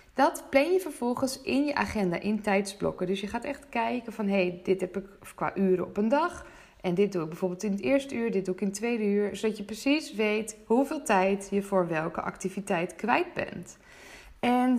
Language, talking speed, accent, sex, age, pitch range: Dutch, 215 wpm, Dutch, female, 20-39, 200-270 Hz